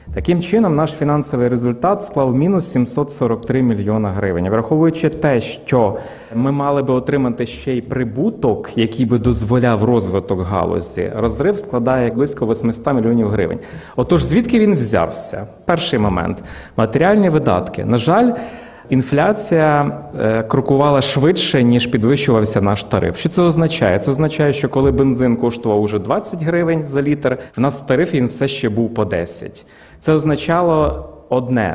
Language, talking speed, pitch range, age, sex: Ukrainian, 140 wpm, 120-155 Hz, 30-49, male